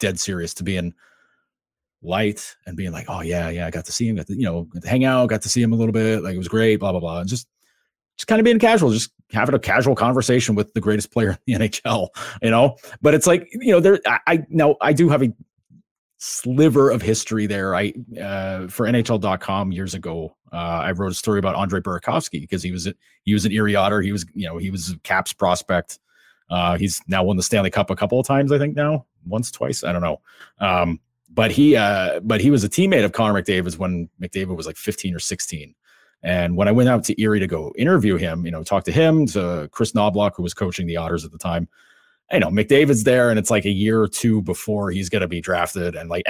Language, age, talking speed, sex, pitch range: English, 30-49, 245 wpm, male, 90-120 Hz